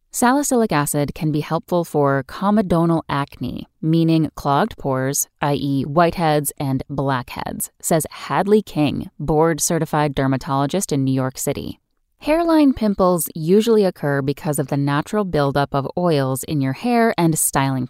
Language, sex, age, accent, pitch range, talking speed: English, female, 10-29, American, 145-200 Hz, 135 wpm